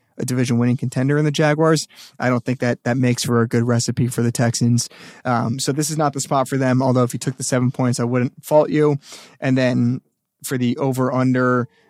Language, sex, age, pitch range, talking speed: English, male, 20-39, 120-140 Hz, 230 wpm